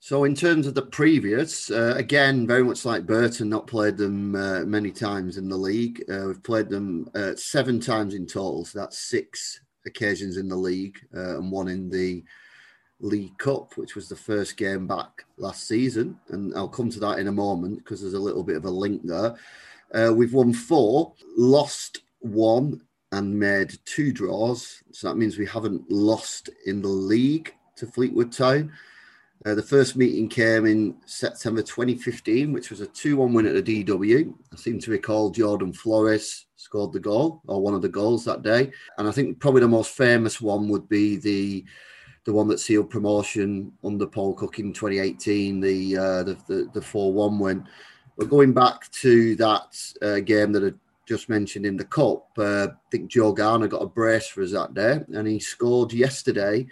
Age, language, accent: 30-49, English, British